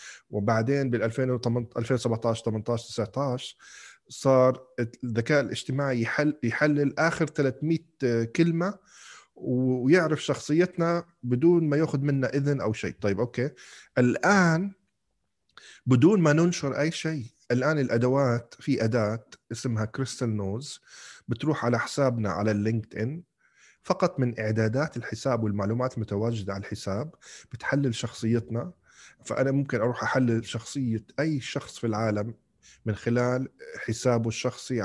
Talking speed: 115 wpm